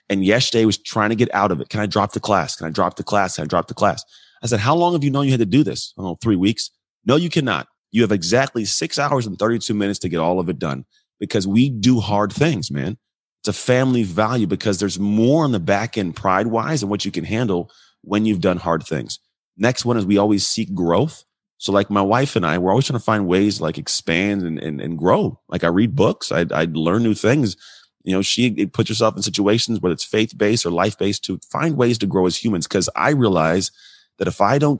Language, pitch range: English, 95-120 Hz